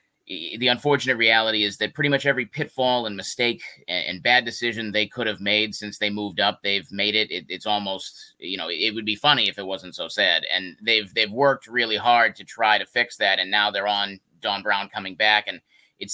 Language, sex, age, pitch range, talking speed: English, male, 30-49, 105-130 Hz, 225 wpm